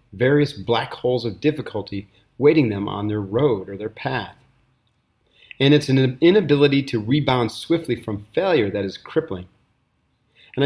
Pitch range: 105-130 Hz